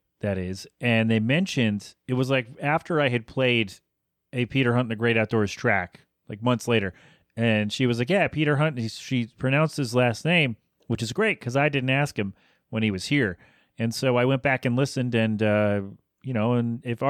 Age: 30-49